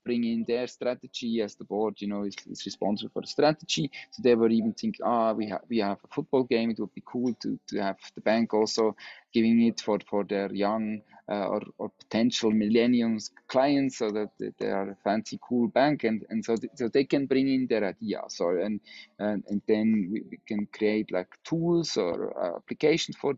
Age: 20-39